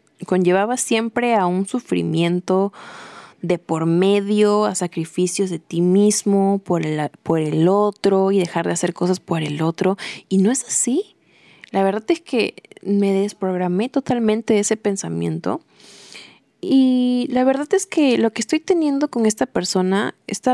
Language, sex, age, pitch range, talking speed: Spanish, female, 20-39, 180-240 Hz, 150 wpm